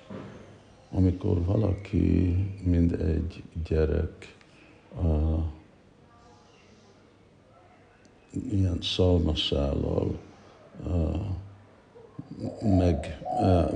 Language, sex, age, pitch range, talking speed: Hungarian, male, 60-79, 80-95 Hz, 50 wpm